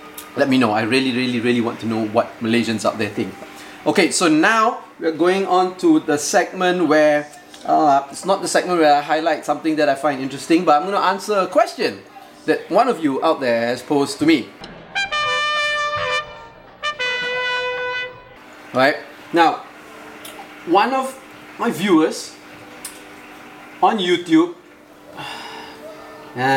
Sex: male